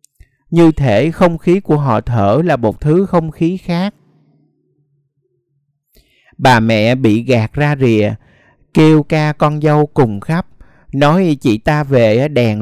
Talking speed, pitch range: 145 wpm, 120-165 Hz